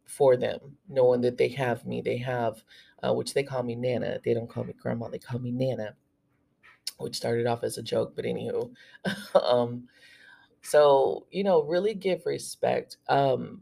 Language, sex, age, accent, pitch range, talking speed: English, female, 30-49, American, 125-150 Hz, 175 wpm